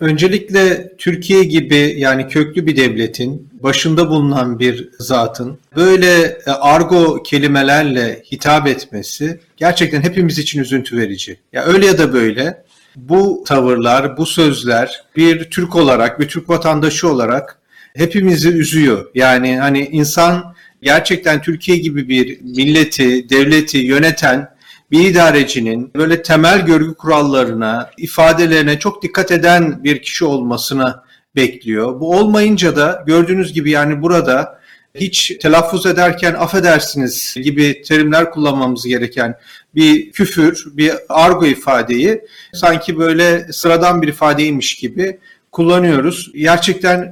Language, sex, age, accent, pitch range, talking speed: Turkish, male, 40-59, native, 135-170 Hz, 115 wpm